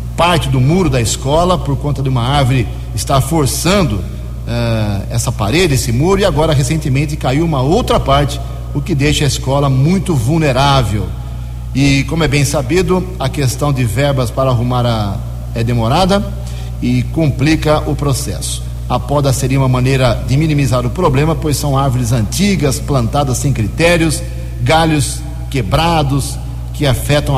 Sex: male